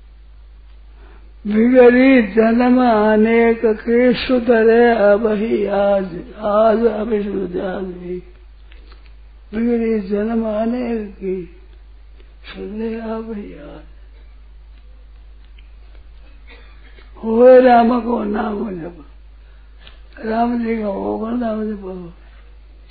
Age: 60-79